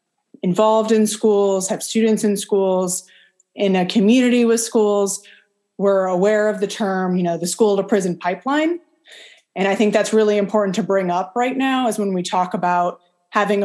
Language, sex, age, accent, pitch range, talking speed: English, female, 20-39, American, 180-215 Hz, 170 wpm